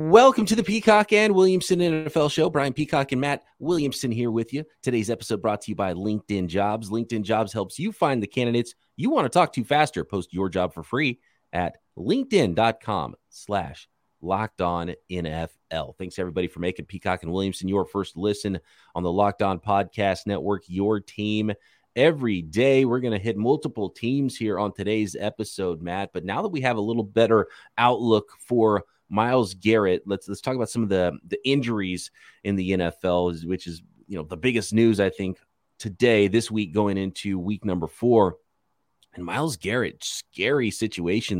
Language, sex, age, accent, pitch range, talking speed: English, male, 30-49, American, 95-120 Hz, 180 wpm